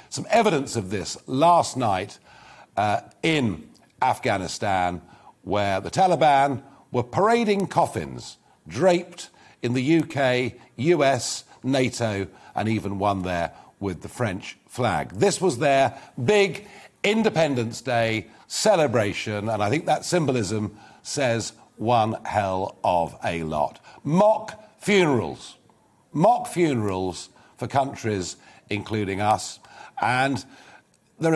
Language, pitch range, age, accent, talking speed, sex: English, 100-160 Hz, 50-69, British, 110 wpm, male